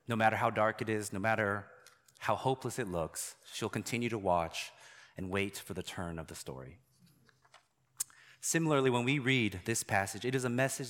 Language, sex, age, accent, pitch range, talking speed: English, male, 30-49, American, 95-125 Hz, 185 wpm